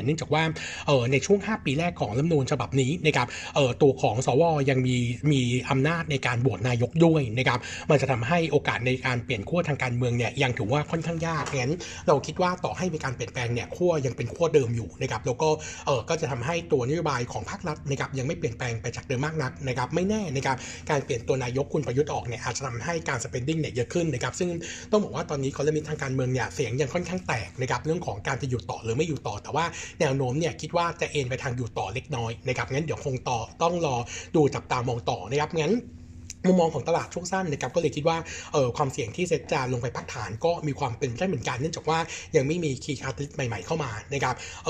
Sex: male